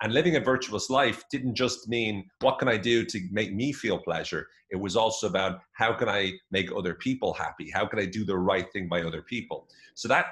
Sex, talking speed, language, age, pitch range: male, 235 wpm, English, 30-49, 95-125 Hz